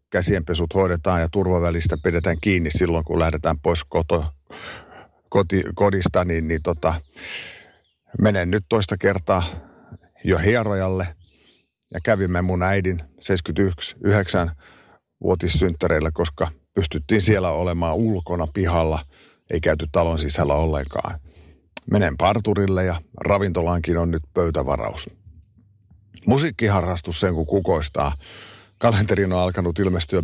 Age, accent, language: 50-69, native, Finnish